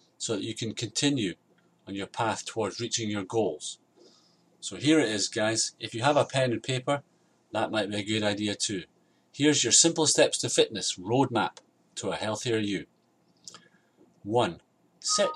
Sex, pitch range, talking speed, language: male, 110-135 Hz, 170 wpm, English